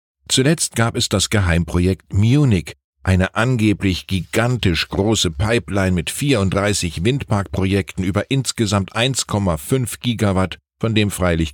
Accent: German